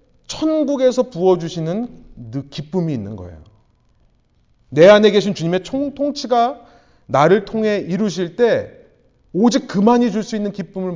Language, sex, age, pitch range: Korean, male, 30-49, 140-230 Hz